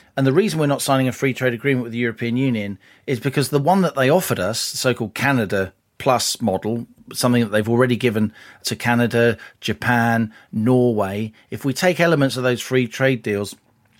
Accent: British